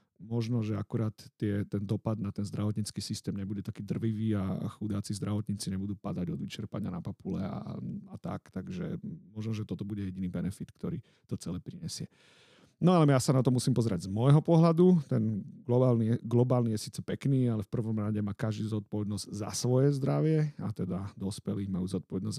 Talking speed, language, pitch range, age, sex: 180 wpm, Slovak, 105-125 Hz, 40-59, male